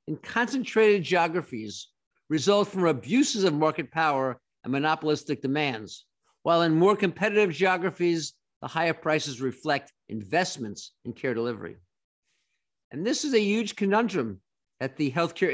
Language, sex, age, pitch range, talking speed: English, male, 50-69, 140-200 Hz, 130 wpm